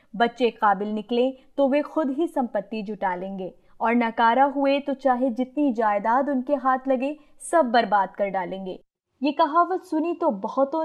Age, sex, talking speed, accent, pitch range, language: 20-39, female, 160 wpm, native, 220-290 Hz, Hindi